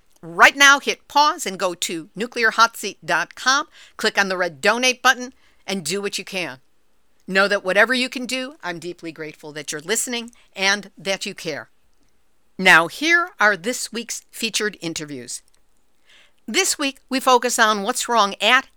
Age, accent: 50-69, American